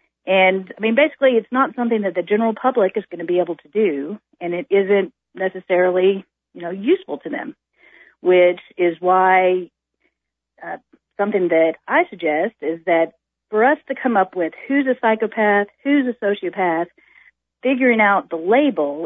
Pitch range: 170-220 Hz